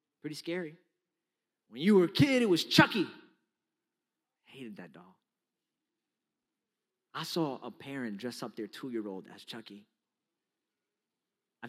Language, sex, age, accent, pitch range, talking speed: English, male, 30-49, American, 115-155 Hz, 130 wpm